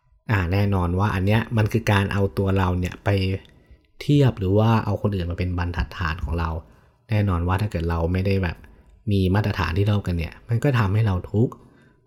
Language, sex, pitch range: Thai, male, 90-110 Hz